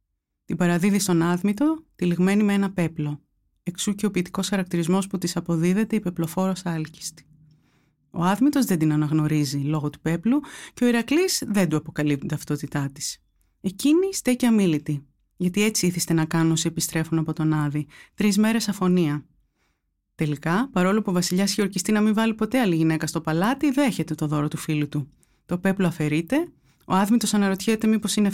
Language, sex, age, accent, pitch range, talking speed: Greek, female, 30-49, native, 155-215 Hz, 165 wpm